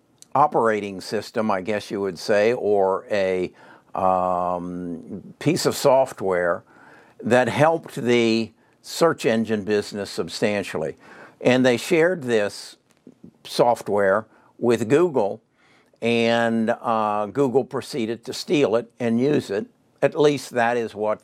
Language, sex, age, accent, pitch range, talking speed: English, male, 60-79, American, 105-125 Hz, 120 wpm